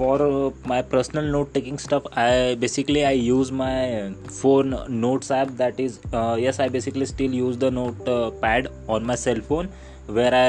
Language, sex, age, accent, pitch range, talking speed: Hindi, male, 20-39, native, 120-145 Hz, 185 wpm